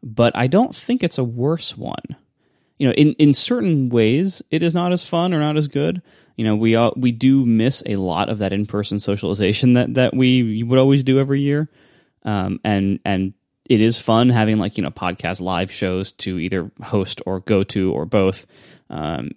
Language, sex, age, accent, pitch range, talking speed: English, male, 20-39, American, 105-140 Hz, 210 wpm